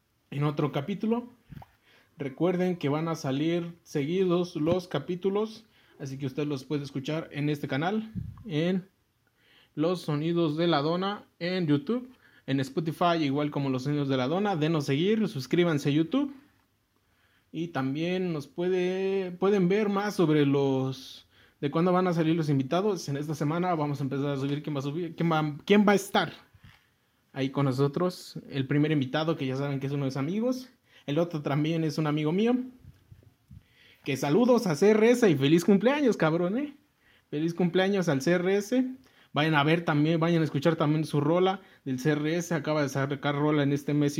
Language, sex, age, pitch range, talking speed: Spanish, male, 30-49, 140-180 Hz, 175 wpm